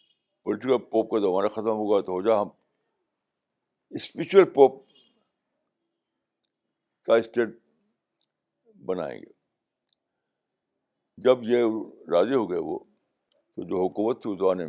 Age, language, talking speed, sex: 60-79, Urdu, 115 wpm, male